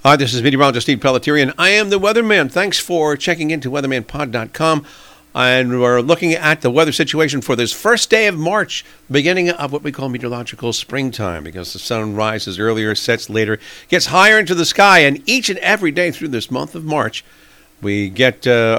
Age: 50-69